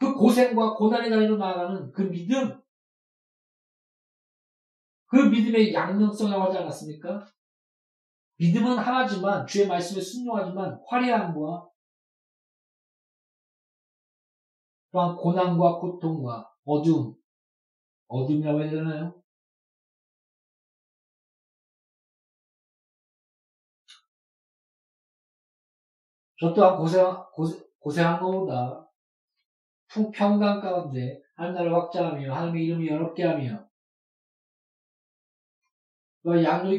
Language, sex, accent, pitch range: Korean, male, native, 165-200 Hz